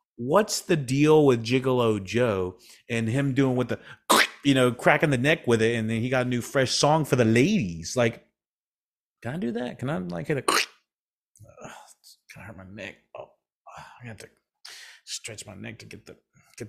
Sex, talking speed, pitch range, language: male, 190 wpm, 110-135 Hz, English